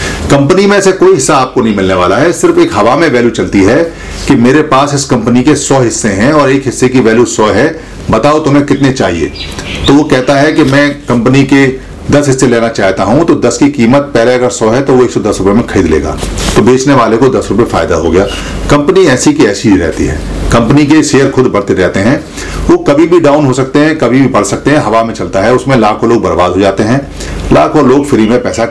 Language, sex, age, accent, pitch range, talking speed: Hindi, male, 50-69, native, 110-140 Hz, 245 wpm